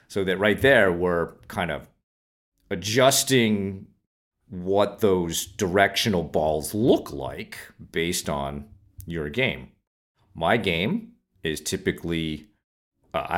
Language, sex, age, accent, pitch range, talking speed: English, male, 40-59, American, 80-100 Hz, 105 wpm